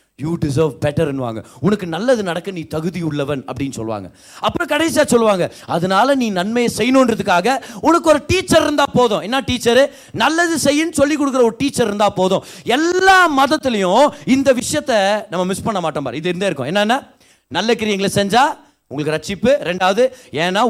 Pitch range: 160-255 Hz